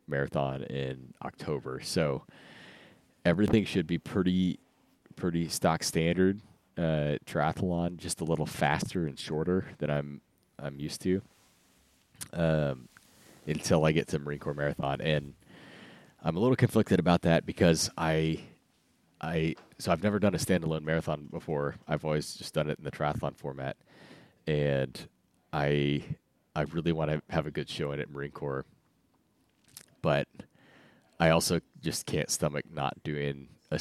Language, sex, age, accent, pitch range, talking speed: English, male, 30-49, American, 70-85 Hz, 145 wpm